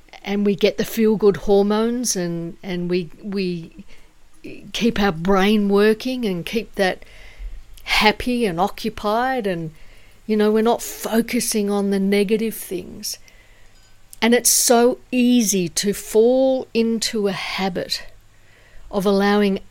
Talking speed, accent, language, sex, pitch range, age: 125 wpm, Australian, English, female, 175-215 Hz, 50-69